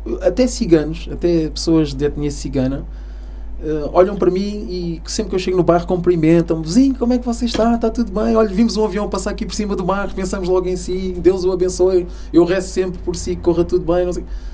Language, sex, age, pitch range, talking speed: Portuguese, male, 20-39, 135-200 Hz, 225 wpm